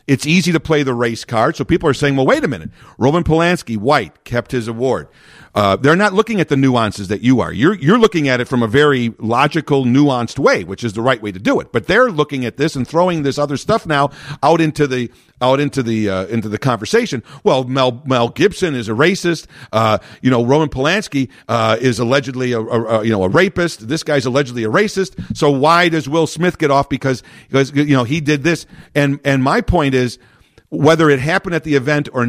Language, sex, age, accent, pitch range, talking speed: English, male, 50-69, American, 130-175 Hz, 230 wpm